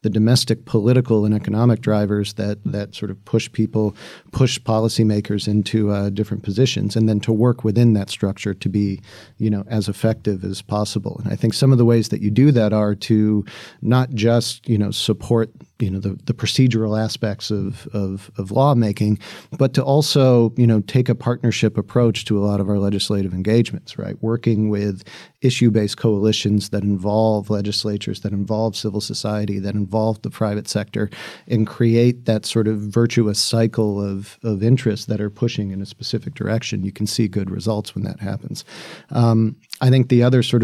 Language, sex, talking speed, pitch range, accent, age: English, male, 180 wpm, 105-120 Hz, American, 40-59